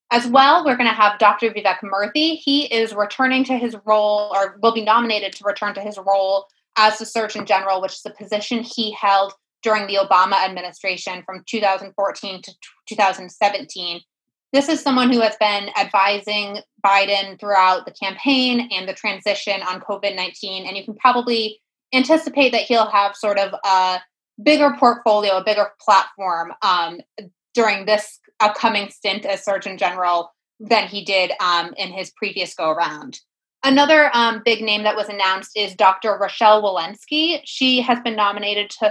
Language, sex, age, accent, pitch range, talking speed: English, female, 20-39, American, 195-230 Hz, 160 wpm